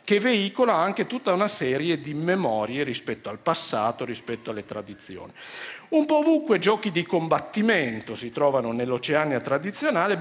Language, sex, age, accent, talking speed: Italian, male, 50-69, native, 140 wpm